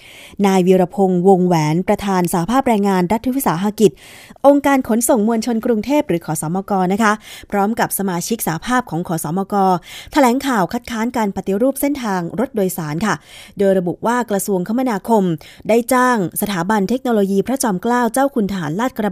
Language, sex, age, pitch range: Thai, female, 20-39, 185-235 Hz